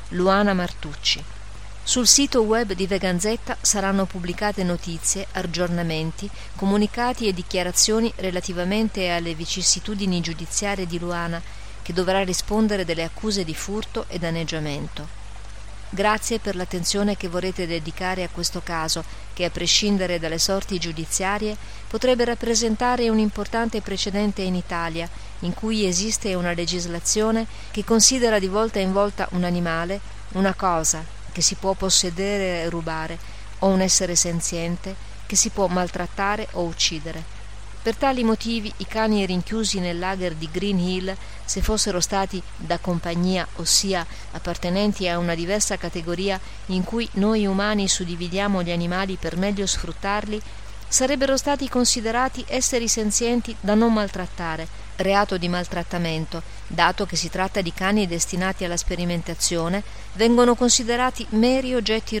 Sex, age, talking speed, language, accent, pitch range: female, 40-59, 135 wpm, Italian, native, 175-210 Hz